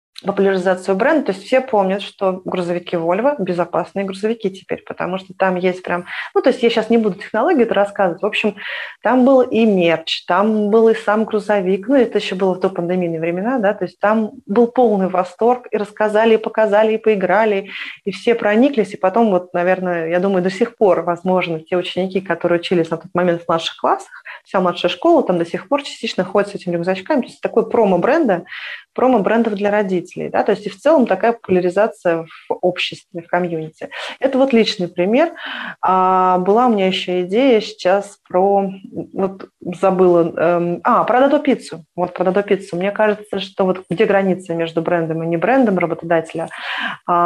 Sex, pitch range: female, 175-215 Hz